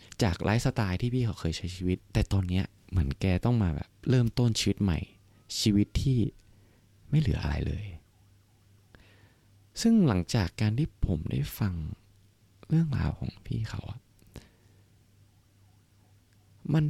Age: 20-39